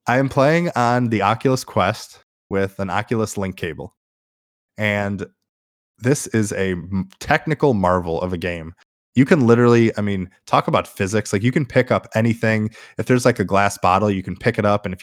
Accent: American